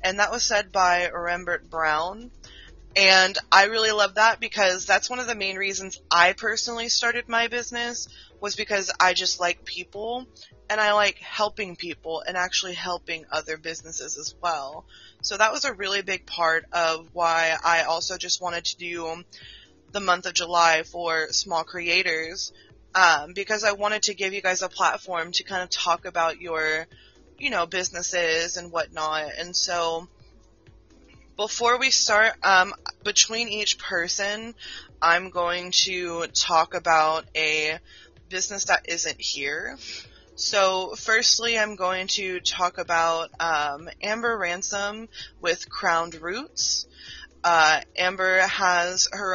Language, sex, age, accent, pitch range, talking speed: English, female, 20-39, American, 165-205 Hz, 145 wpm